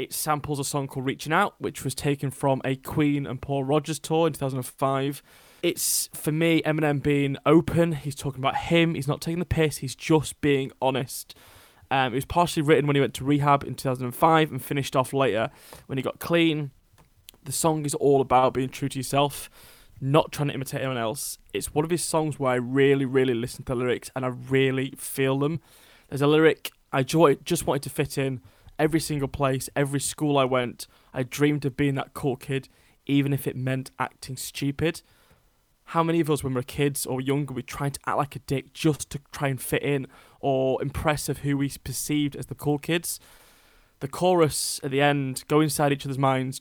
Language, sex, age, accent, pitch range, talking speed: English, male, 20-39, British, 130-150 Hz, 210 wpm